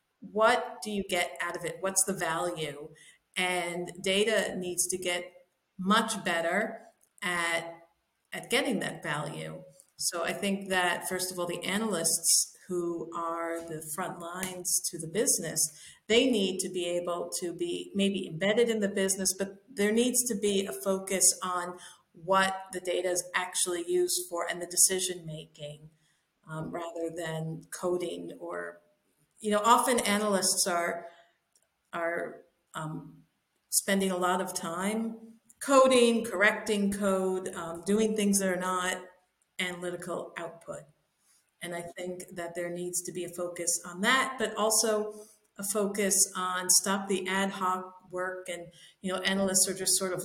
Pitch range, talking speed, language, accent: 170-205 Hz, 155 wpm, English, American